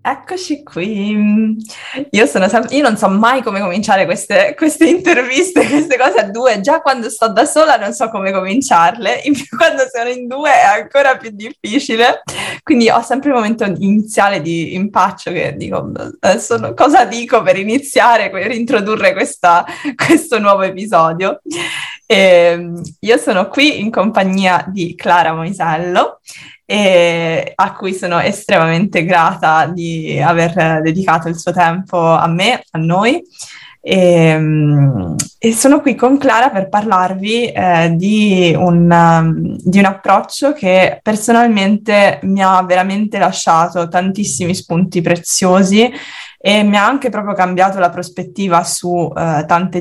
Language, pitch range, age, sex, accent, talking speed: Italian, 170-235 Hz, 20-39, female, native, 140 wpm